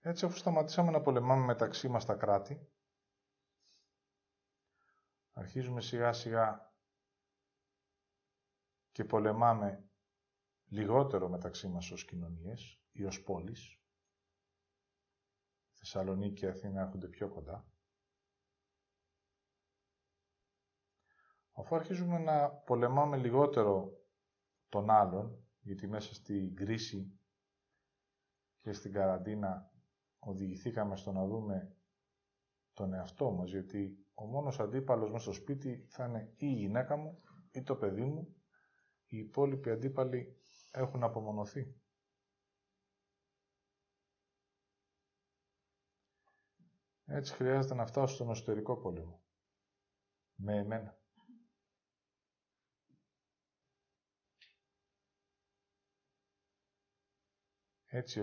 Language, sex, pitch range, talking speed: Greek, male, 100-120 Hz, 80 wpm